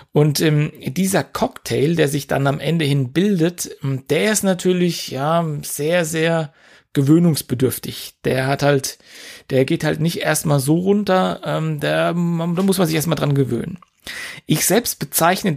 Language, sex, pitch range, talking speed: German, male, 140-170 Hz, 160 wpm